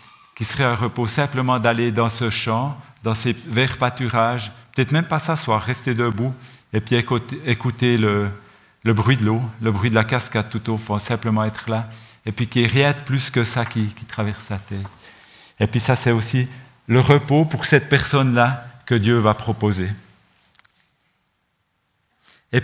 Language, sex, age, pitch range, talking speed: French, male, 50-69, 110-130 Hz, 185 wpm